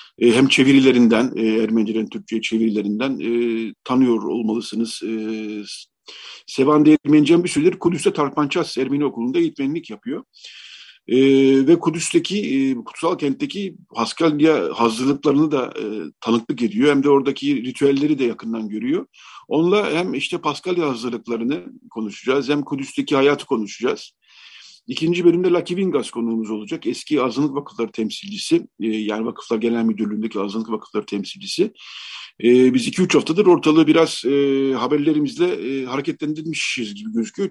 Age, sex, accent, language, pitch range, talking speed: 50-69, male, native, Turkish, 115-165 Hz, 130 wpm